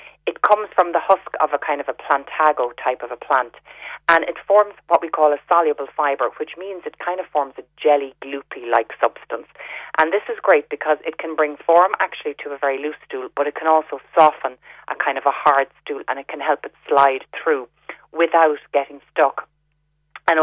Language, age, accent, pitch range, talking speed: English, 30-49, Irish, 140-170 Hz, 210 wpm